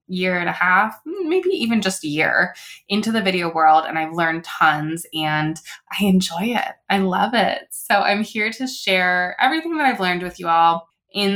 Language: English